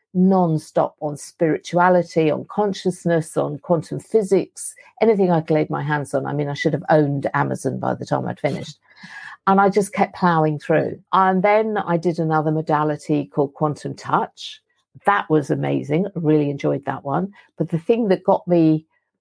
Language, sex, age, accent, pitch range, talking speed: English, female, 50-69, British, 150-185 Hz, 180 wpm